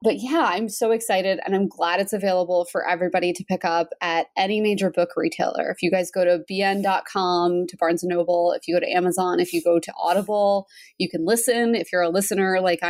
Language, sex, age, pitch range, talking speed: English, female, 20-39, 175-225 Hz, 220 wpm